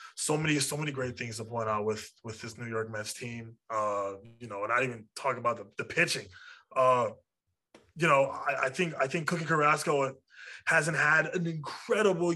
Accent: American